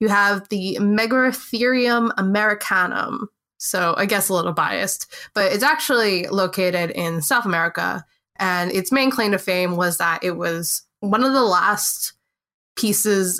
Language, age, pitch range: English, 20-39, 180-230 Hz